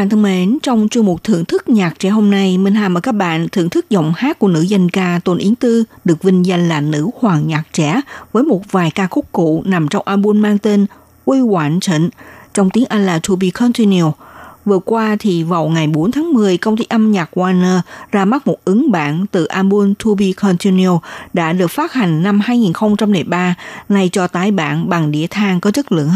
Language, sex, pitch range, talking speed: Vietnamese, female, 175-220 Hz, 220 wpm